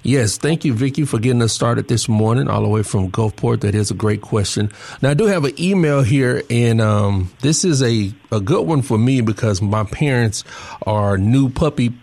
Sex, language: male, English